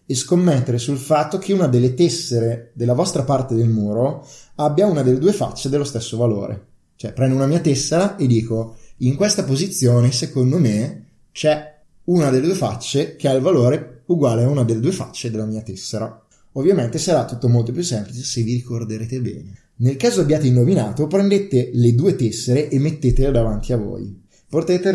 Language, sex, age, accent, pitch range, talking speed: Italian, male, 20-39, native, 115-150 Hz, 180 wpm